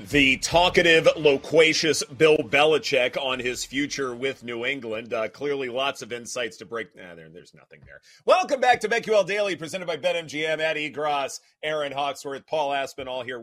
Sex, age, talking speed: male, 30-49, 170 wpm